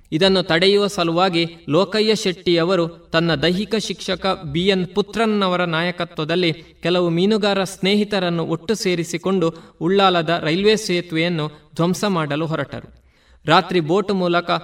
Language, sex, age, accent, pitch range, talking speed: Kannada, male, 20-39, native, 160-190 Hz, 110 wpm